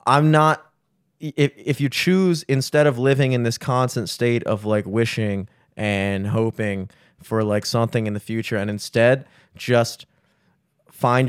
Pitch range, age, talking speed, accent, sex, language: 105-135 Hz, 20-39, 150 wpm, American, male, English